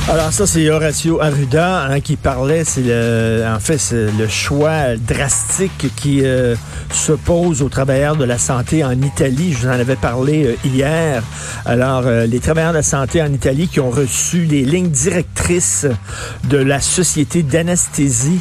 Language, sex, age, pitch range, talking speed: French, male, 50-69, 125-155 Hz, 175 wpm